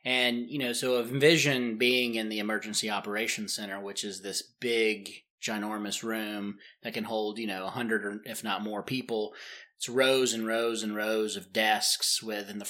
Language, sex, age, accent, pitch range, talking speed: English, male, 30-49, American, 105-125 Hz, 195 wpm